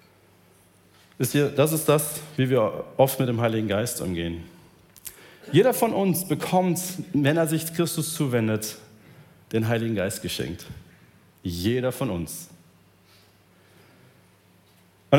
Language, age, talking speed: German, 40-59, 110 wpm